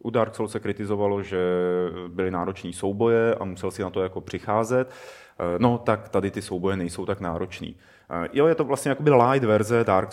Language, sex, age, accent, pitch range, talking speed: Czech, male, 30-49, native, 95-115 Hz, 190 wpm